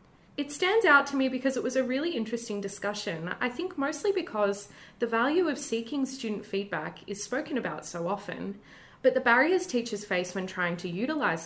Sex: female